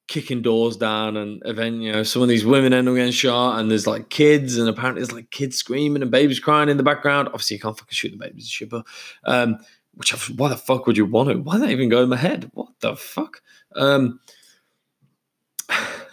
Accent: British